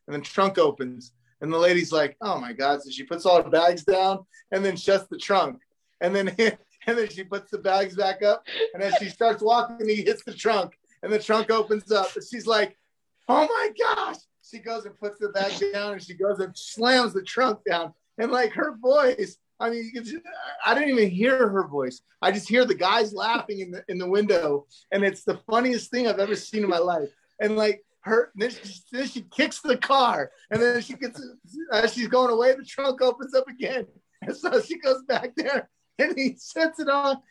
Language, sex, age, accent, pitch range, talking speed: English, male, 30-49, American, 190-245 Hz, 220 wpm